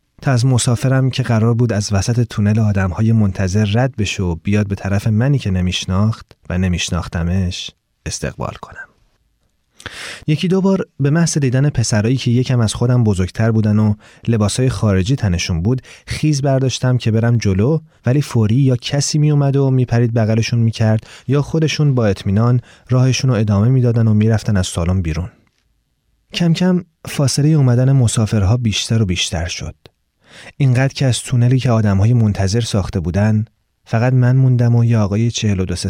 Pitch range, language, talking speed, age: 100-130 Hz, Persian, 155 wpm, 30-49